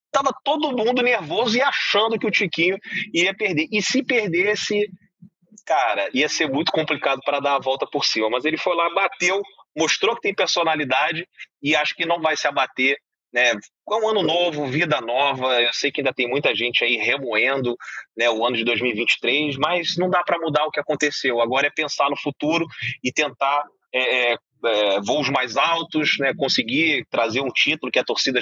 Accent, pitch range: Brazilian, 130-185 Hz